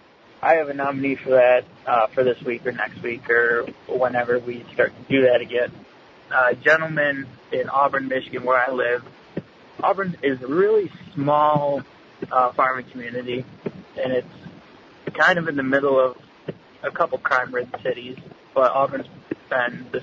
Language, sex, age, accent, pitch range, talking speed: English, male, 20-39, American, 125-155 Hz, 160 wpm